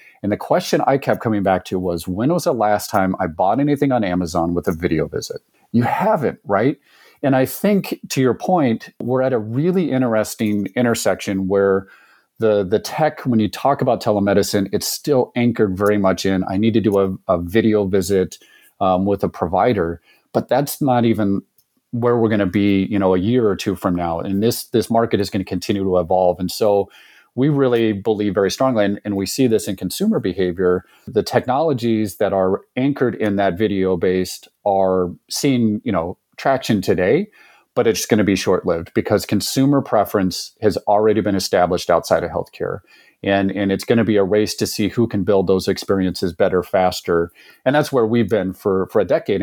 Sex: male